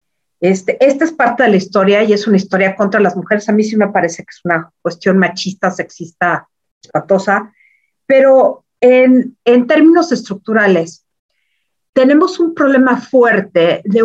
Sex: female